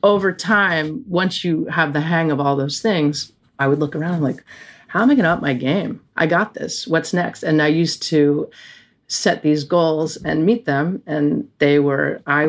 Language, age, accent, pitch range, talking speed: English, 40-59, American, 150-190 Hz, 210 wpm